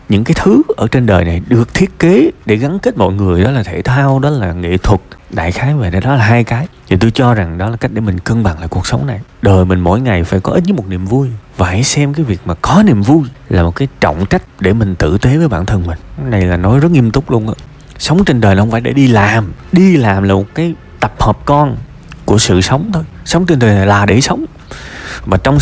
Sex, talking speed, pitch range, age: male, 275 wpm, 100-145 Hz, 20-39